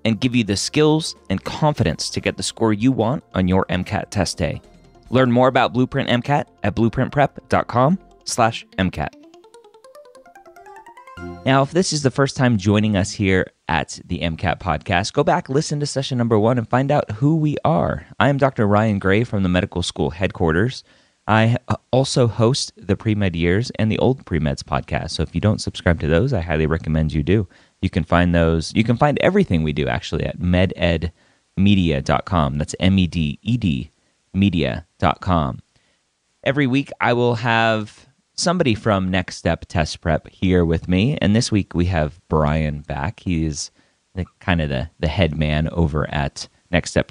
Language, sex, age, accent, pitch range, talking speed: English, male, 30-49, American, 85-125 Hz, 170 wpm